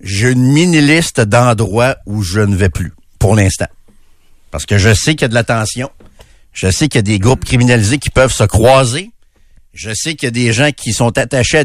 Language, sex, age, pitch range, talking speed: French, male, 60-79, 100-140 Hz, 215 wpm